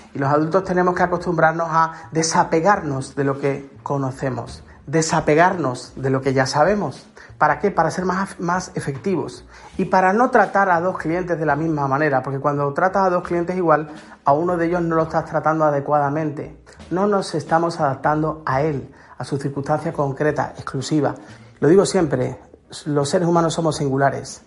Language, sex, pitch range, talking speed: Spanish, male, 140-175 Hz, 175 wpm